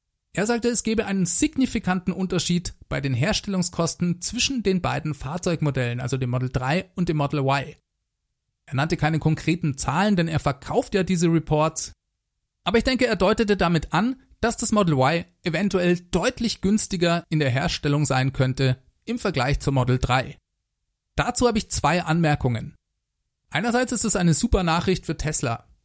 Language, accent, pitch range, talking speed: German, German, 140-200 Hz, 165 wpm